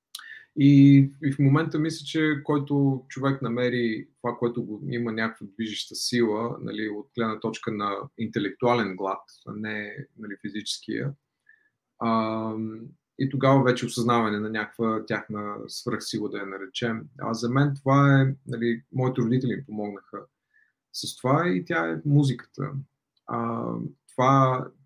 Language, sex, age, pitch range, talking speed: Bulgarian, male, 30-49, 110-135 Hz, 135 wpm